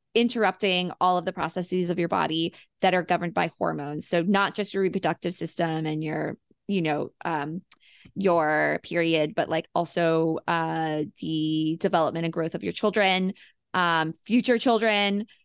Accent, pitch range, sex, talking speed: American, 170-205 Hz, female, 155 wpm